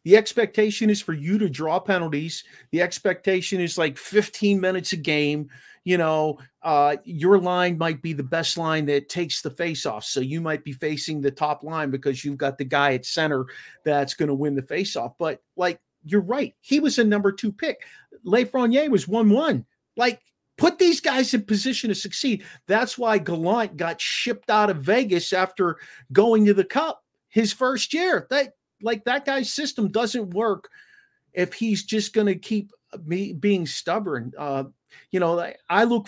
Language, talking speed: English, 185 wpm